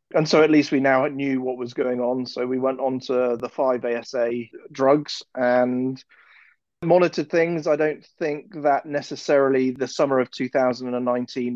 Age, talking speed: 30-49, 165 wpm